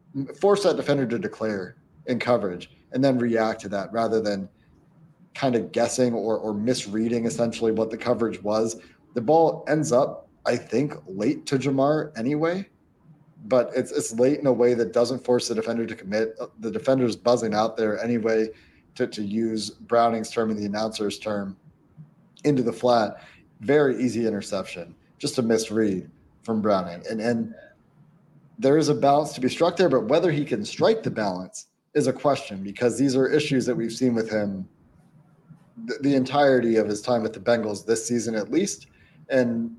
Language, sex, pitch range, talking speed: English, male, 110-140 Hz, 180 wpm